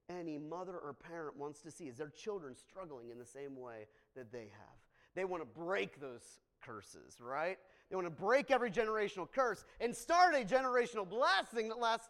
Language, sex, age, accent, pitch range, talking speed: English, male, 30-49, American, 145-215 Hz, 195 wpm